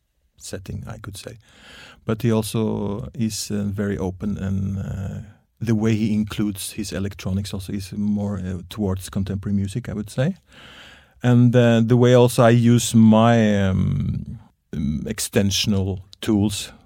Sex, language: male, English